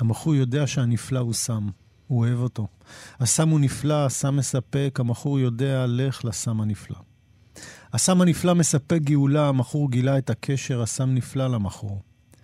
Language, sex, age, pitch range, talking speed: Hebrew, male, 40-59, 115-140 Hz, 140 wpm